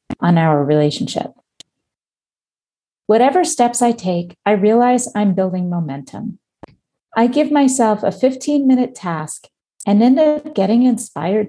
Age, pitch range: 40-59, 180-245 Hz